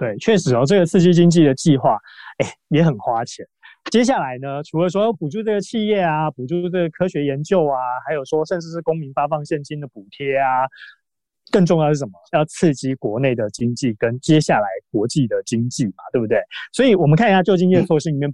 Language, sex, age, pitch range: Chinese, male, 20-39, 135-180 Hz